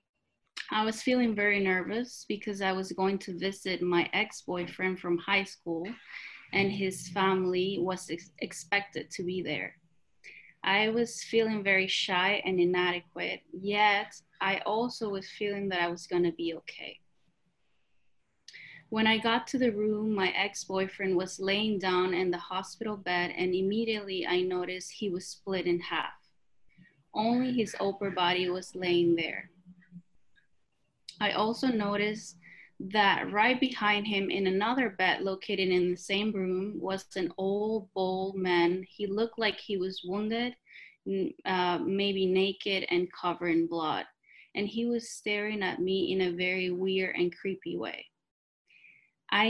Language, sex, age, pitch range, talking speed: English, female, 20-39, 180-210 Hz, 145 wpm